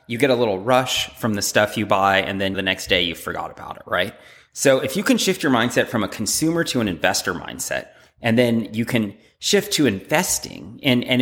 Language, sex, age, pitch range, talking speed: English, male, 30-49, 100-130 Hz, 230 wpm